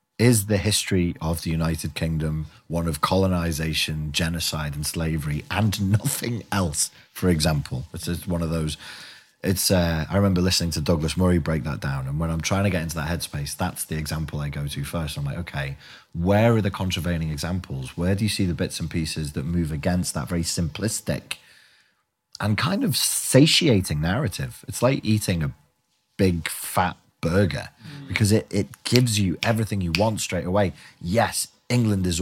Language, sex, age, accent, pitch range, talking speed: English, male, 30-49, British, 80-110 Hz, 180 wpm